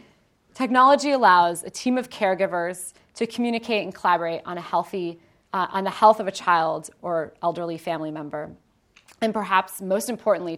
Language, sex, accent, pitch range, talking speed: English, female, American, 170-215 Hz, 160 wpm